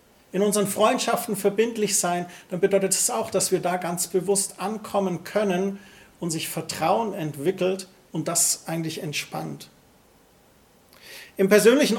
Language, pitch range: German, 175-215 Hz